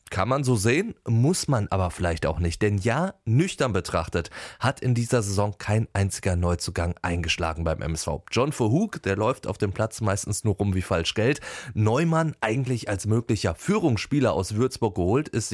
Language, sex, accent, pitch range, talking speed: German, male, German, 95-125 Hz, 180 wpm